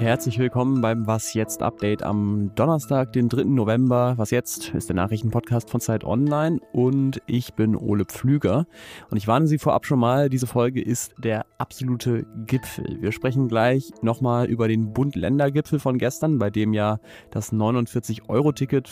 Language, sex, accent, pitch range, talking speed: German, male, German, 110-135 Hz, 160 wpm